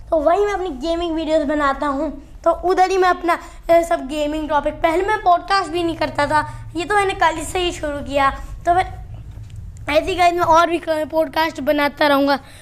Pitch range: 295-345 Hz